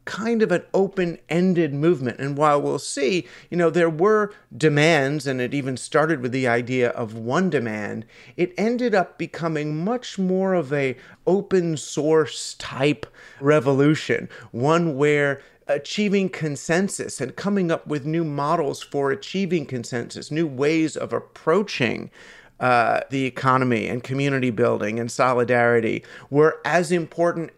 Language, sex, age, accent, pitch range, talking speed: English, male, 40-59, American, 130-165 Hz, 135 wpm